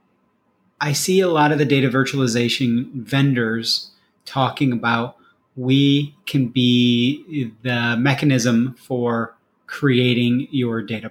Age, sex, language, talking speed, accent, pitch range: 30-49, male, English, 110 wpm, American, 125-150 Hz